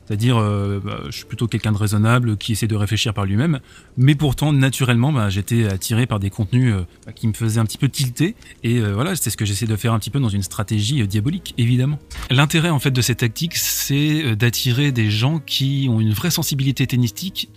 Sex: male